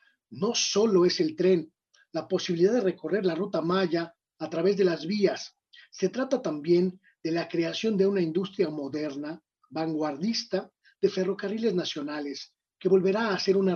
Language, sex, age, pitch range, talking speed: Spanish, male, 40-59, 155-190 Hz, 155 wpm